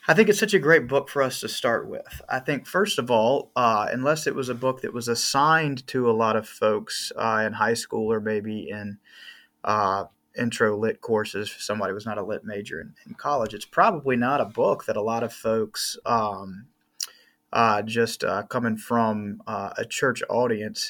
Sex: male